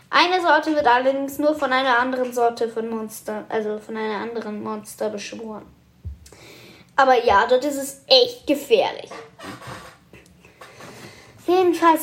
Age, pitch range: 10-29, 230-305 Hz